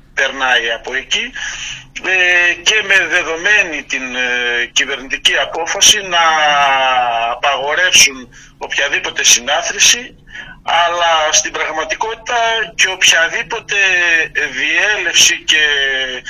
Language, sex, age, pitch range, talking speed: Greek, male, 50-69, 130-175 Hz, 75 wpm